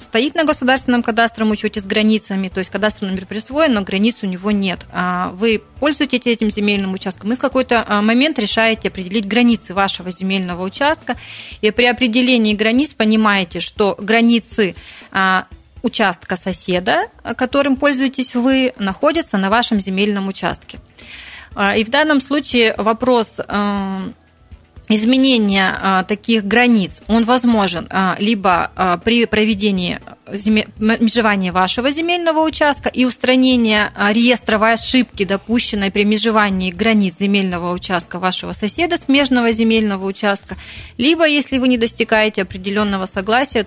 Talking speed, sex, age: 120 wpm, female, 30-49